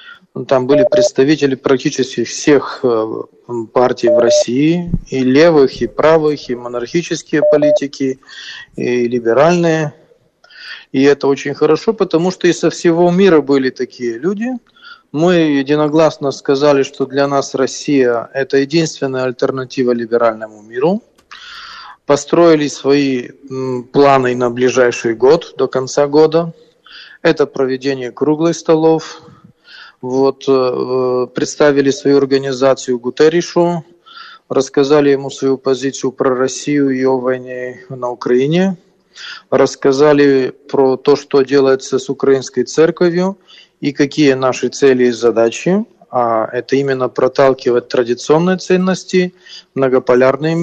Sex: male